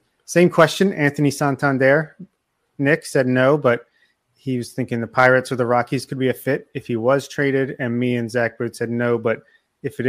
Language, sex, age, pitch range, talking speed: English, male, 30-49, 120-140 Hz, 200 wpm